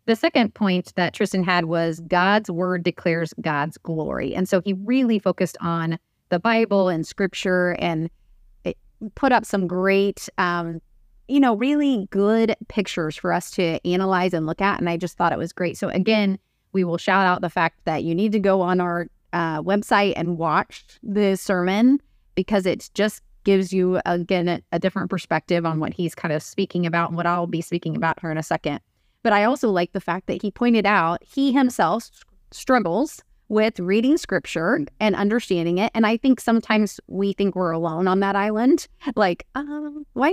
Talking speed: 190 wpm